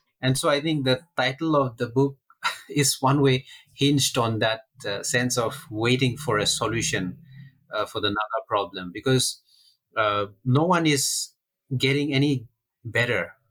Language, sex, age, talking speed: English, male, 30-49, 155 wpm